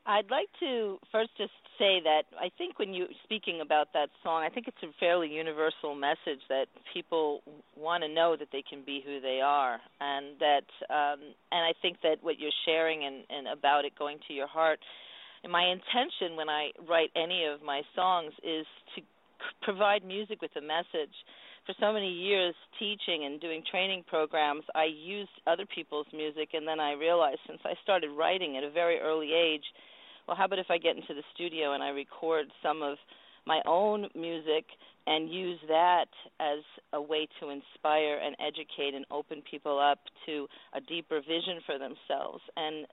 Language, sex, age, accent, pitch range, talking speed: English, female, 40-59, American, 145-180 Hz, 190 wpm